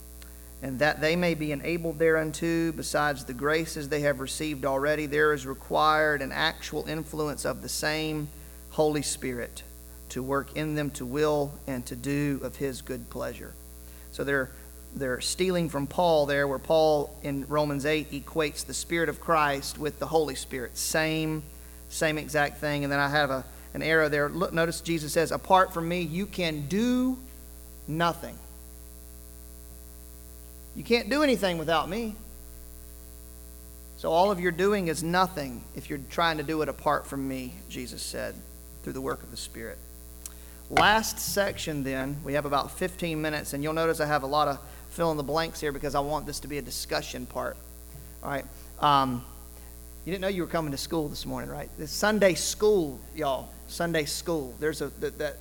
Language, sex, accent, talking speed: English, male, American, 175 wpm